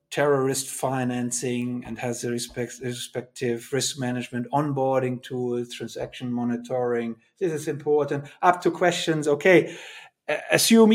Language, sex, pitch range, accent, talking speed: English, male, 120-160 Hz, German, 110 wpm